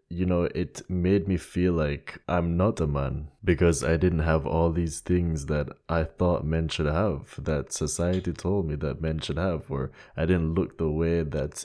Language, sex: English, male